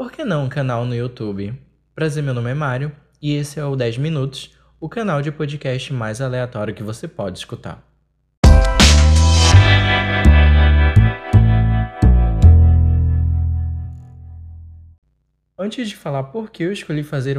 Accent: Brazilian